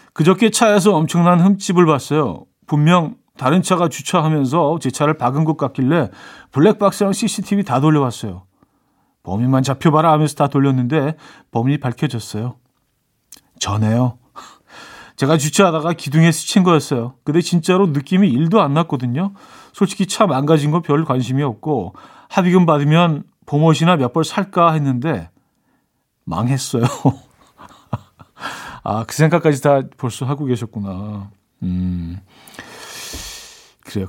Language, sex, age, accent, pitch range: Korean, male, 40-59, native, 125-170 Hz